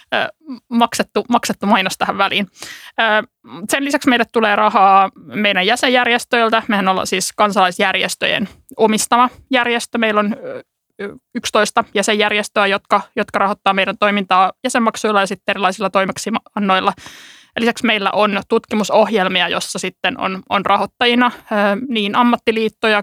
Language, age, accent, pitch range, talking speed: Finnish, 20-39, native, 195-230 Hz, 110 wpm